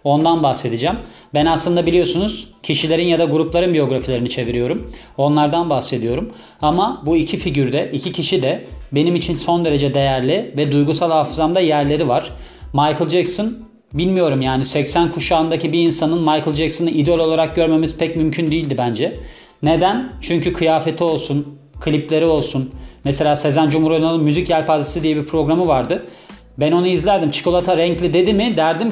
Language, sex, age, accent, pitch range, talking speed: Turkish, male, 40-59, native, 150-175 Hz, 145 wpm